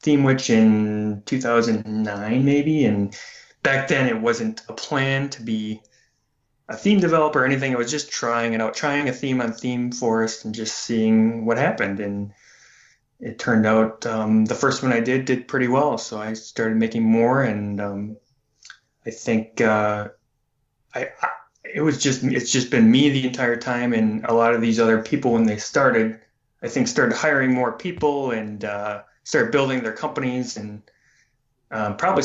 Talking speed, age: 180 wpm, 20-39